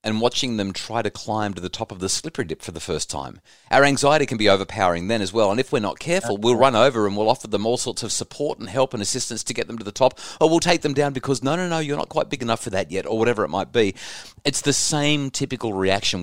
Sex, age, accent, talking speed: male, 30-49, Australian, 290 wpm